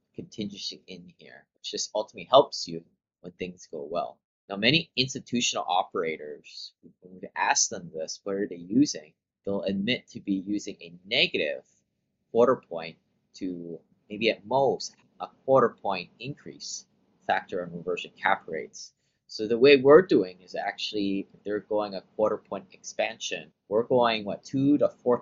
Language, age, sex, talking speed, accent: English, 30-49, male, 155 wpm, American